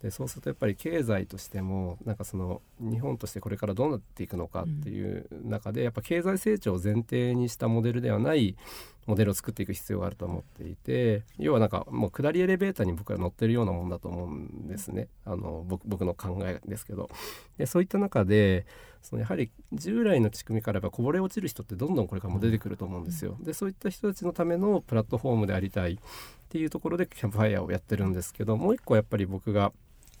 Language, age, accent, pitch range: Japanese, 40-59, native, 95-120 Hz